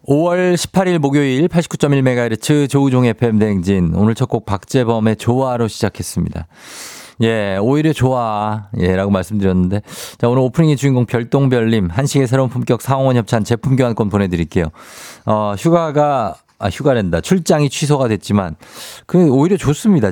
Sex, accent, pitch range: male, native, 100-140 Hz